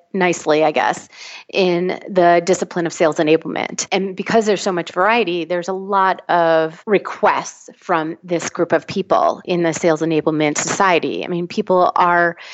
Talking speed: 165 wpm